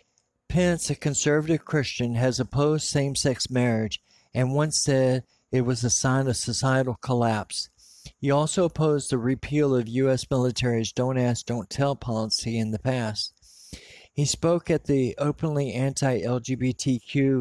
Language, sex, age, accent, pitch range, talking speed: English, male, 50-69, American, 115-140 Hz, 140 wpm